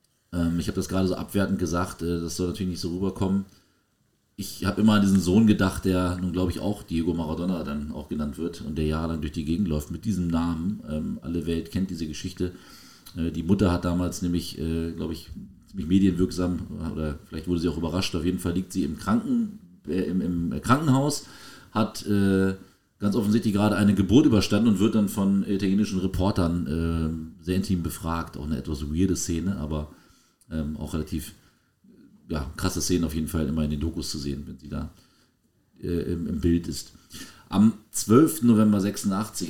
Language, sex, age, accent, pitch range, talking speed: German, male, 40-59, German, 85-105 Hz, 180 wpm